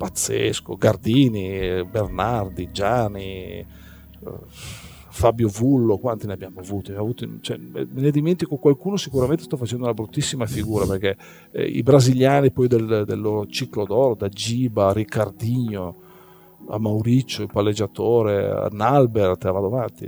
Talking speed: 135 wpm